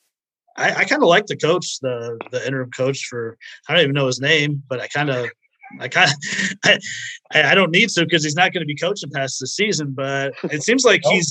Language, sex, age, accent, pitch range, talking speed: English, male, 30-49, American, 130-170 Hz, 235 wpm